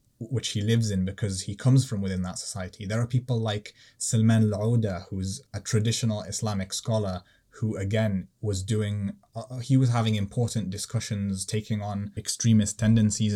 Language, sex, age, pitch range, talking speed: English, male, 20-39, 100-115 Hz, 160 wpm